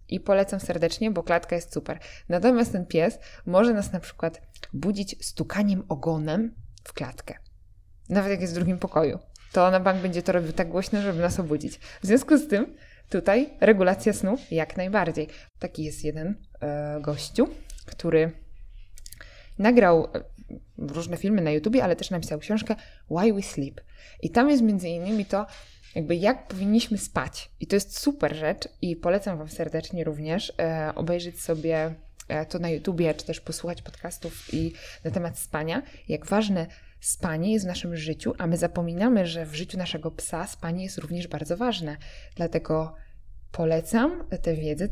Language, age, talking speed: Polish, 20-39, 160 wpm